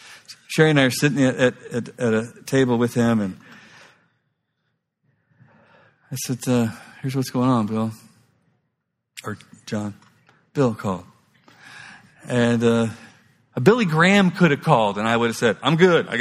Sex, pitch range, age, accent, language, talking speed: male, 105-130 Hz, 50-69, American, English, 150 wpm